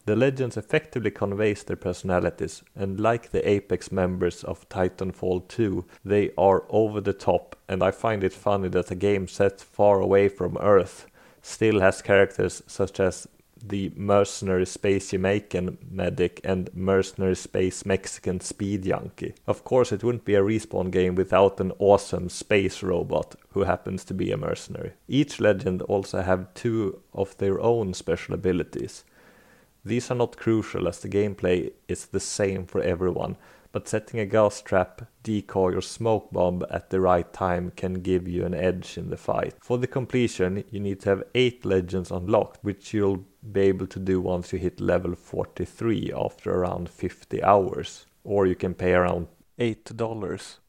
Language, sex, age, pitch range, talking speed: English, male, 30-49, 90-105 Hz, 170 wpm